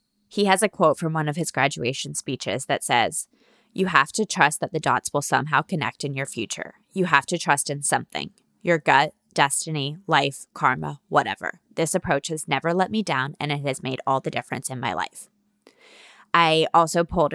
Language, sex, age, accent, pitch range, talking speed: English, female, 20-39, American, 145-185 Hz, 195 wpm